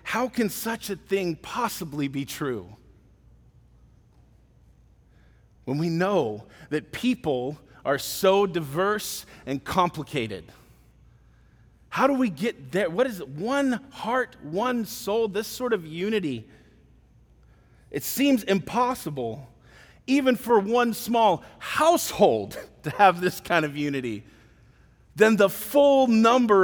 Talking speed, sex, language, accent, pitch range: 115 wpm, male, English, American, 135-195 Hz